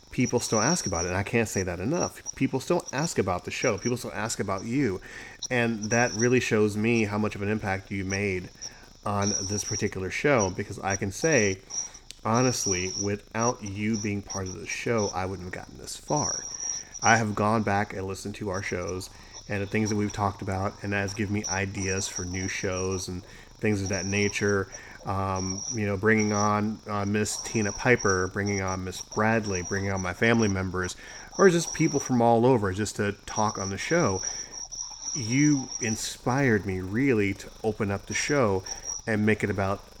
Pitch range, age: 95-110 Hz, 30-49